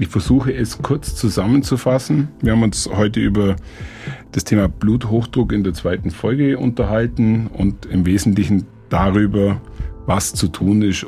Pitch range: 95-120 Hz